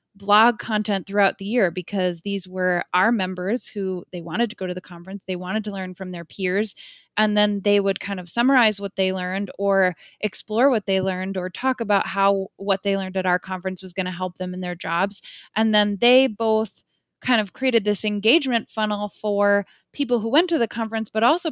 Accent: American